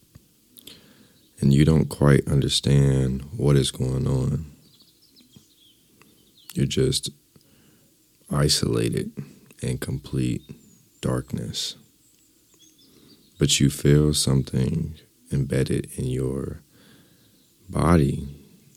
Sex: male